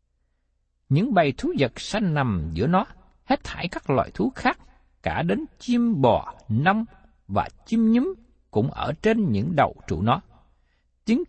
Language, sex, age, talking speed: Vietnamese, male, 60-79, 160 wpm